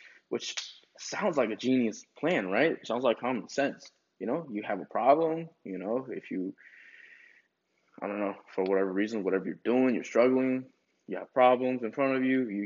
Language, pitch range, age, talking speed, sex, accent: English, 105-135 Hz, 20-39, 190 wpm, male, American